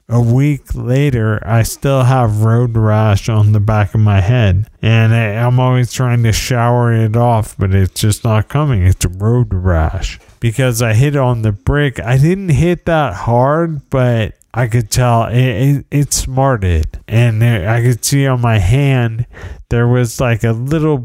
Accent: American